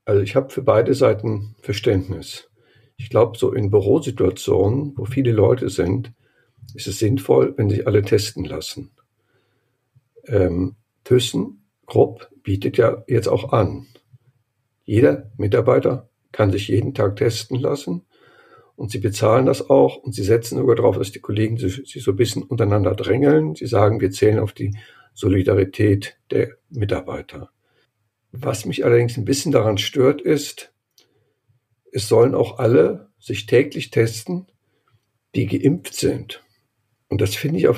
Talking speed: 145 wpm